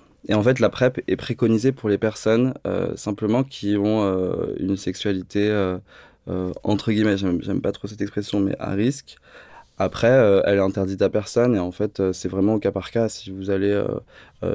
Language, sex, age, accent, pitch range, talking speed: French, male, 20-39, French, 100-115 Hz, 215 wpm